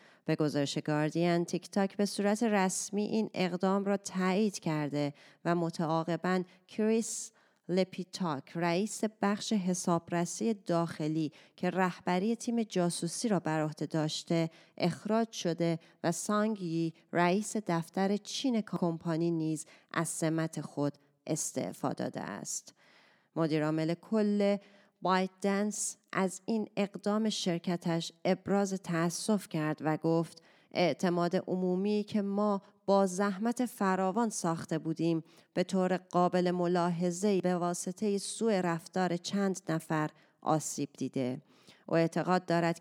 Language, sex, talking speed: Persian, female, 110 wpm